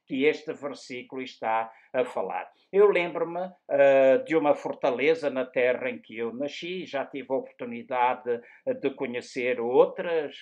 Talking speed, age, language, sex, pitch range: 145 wpm, 60-79, Portuguese, male, 125-155 Hz